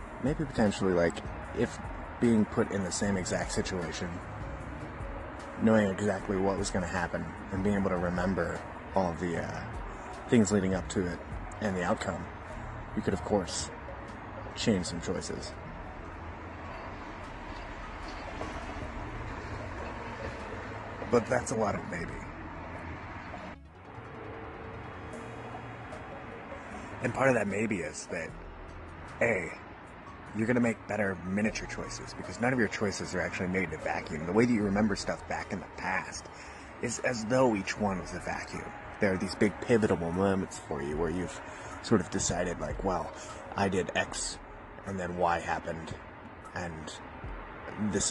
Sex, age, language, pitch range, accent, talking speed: male, 30-49, English, 85-105 Hz, American, 140 wpm